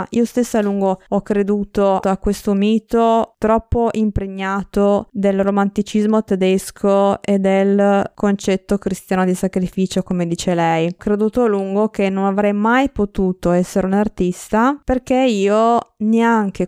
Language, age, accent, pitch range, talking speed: Italian, 20-39, native, 185-225 Hz, 135 wpm